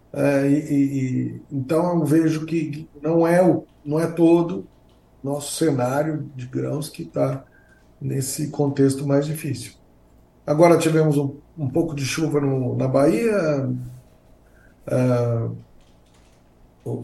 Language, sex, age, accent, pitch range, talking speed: Portuguese, male, 60-79, Brazilian, 120-150 Hz, 125 wpm